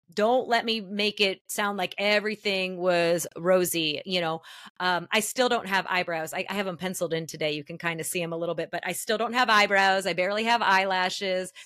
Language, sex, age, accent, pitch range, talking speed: English, female, 30-49, American, 170-205 Hz, 225 wpm